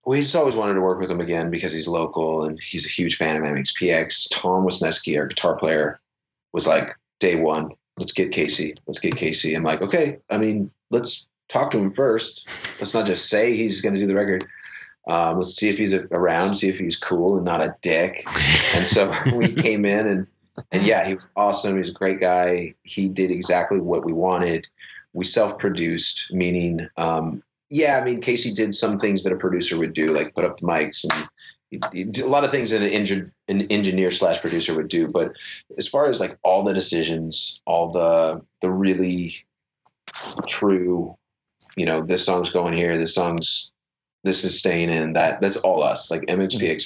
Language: English